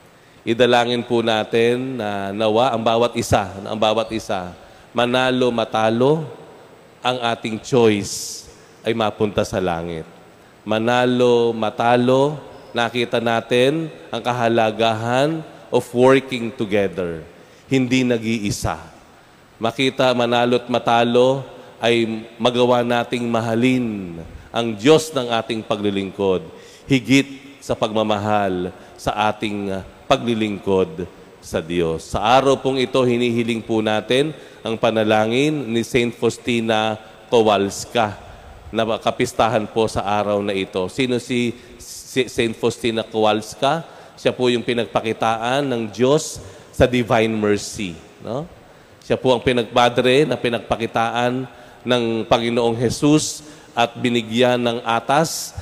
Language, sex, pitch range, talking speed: Filipino, male, 110-125 Hz, 110 wpm